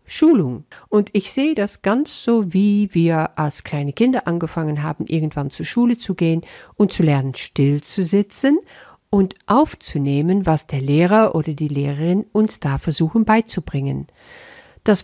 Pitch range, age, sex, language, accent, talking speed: 155-210 Hz, 50-69, female, German, German, 150 wpm